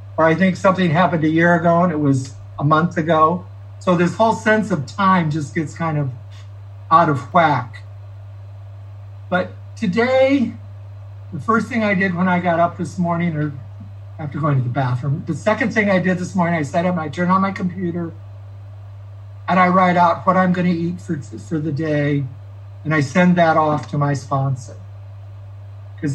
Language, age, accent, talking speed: English, 60-79, American, 190 wpm